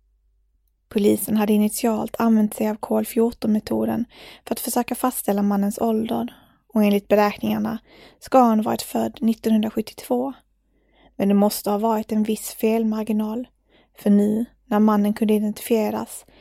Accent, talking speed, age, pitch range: native, 130 wpm, 20-39, 210-230 Hz